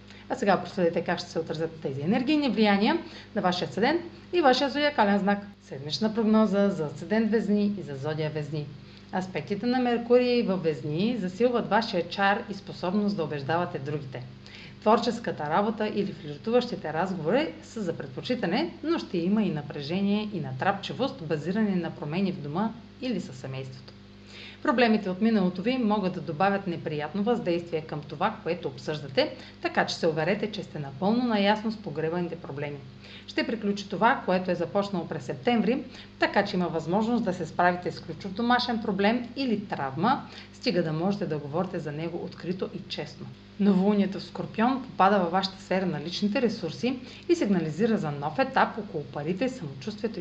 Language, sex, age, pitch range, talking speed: Bulgarian, female, 40-59, 165-220 Hz, 160 wpm